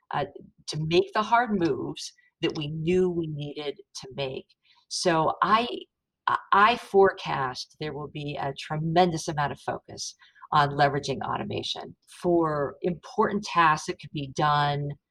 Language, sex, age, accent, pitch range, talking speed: English, female, 40-59, American, 150-195 Hz, 140 wpm